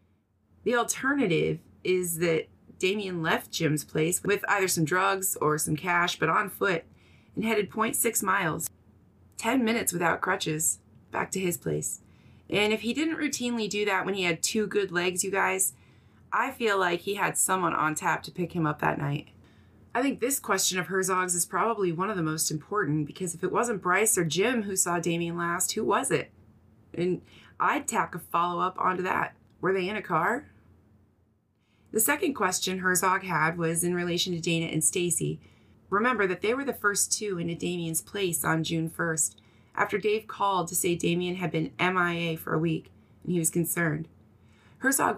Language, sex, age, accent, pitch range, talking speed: English, female, 30-49, American, 160-195 Hz, 185 wpm